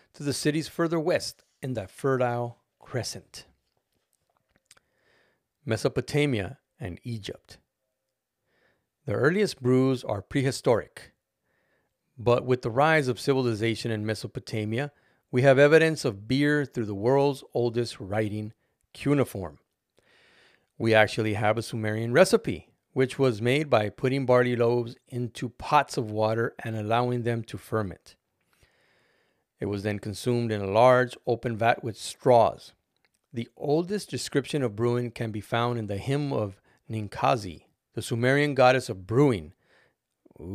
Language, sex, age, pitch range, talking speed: English, male, 40-59, 110-135 Hz, 130 wpm